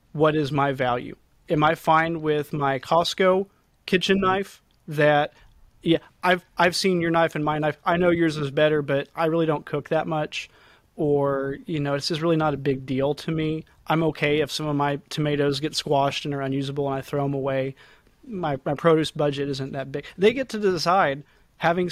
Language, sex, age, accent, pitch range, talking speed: English, male, 30-49, American, 145-165 Hz, 205 wpm